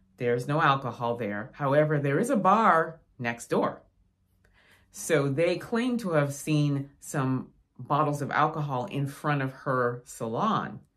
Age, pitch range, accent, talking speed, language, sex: 30-49, 135-160 Hz, American, 140 wpm, English, female